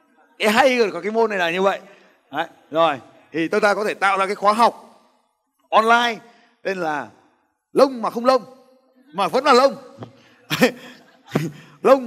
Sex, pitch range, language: male, 170-255 Hz, Vietnamese